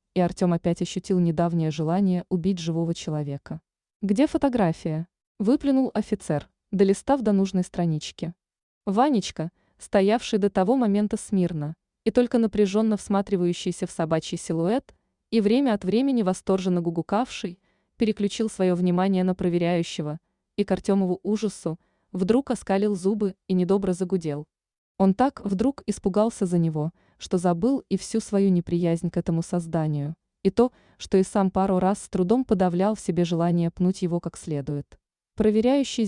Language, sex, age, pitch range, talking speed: Russian, female, 20-39, 170-215 Hz, 145 wpm